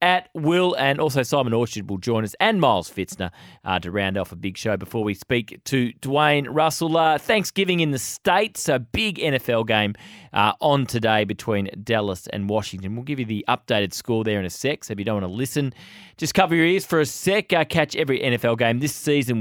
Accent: Australian